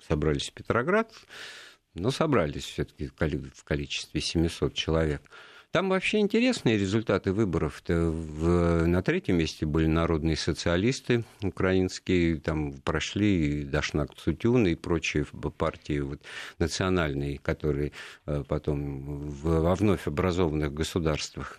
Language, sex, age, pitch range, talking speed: Russian, male, 50-69, 75-95 Hz, 100 wpm